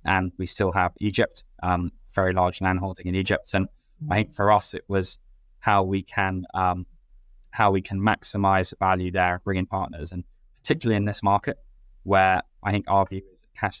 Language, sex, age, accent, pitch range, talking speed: English, male, 10-29, British, 90-100 Hz, 190 wpm